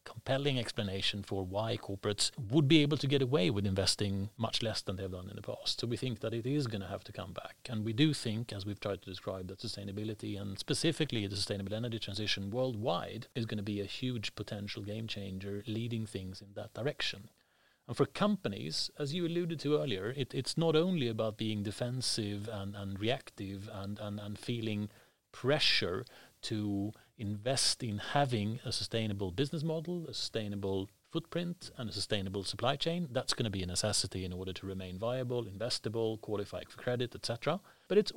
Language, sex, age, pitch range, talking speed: English, male, 30-49, 100-130 Hz, 190 wpm